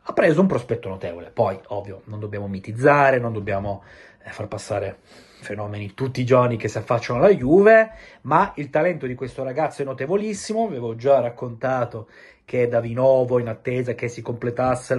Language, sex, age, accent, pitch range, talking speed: Italian, male, 30-49, native, 110-145 Hz, 170 wpm